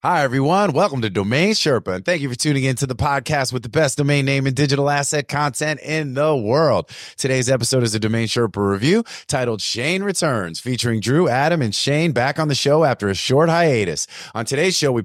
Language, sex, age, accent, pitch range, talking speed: English, male, 30-49, American, 115-145 Hz, 215 wpm